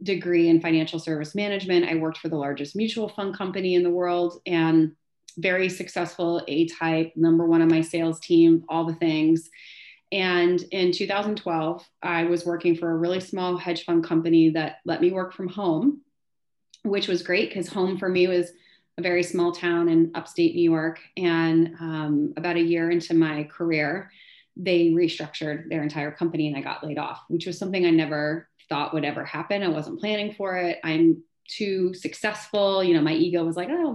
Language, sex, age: English, female, 30-49